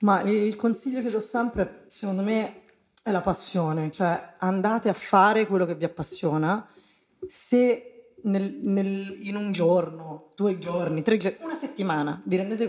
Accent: native